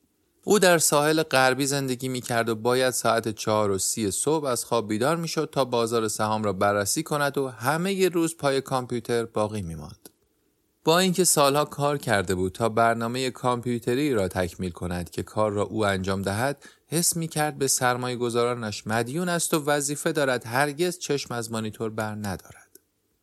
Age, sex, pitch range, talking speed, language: 30-49, male, 100-145 Hz, 170 wpm, Persian